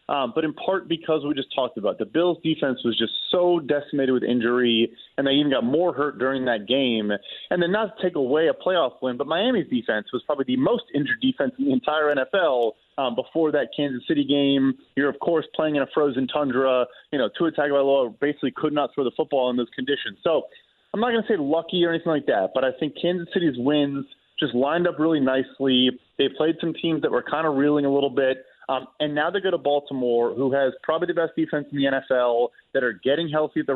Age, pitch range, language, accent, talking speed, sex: 30-49, 135-170 Hz, English, American, 240 wpm, male